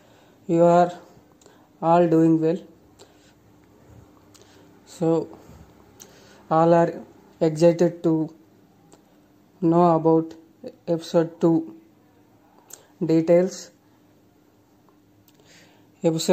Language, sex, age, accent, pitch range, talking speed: Telugu, female, 30-49, native, 150-170 Hz, 60 wpm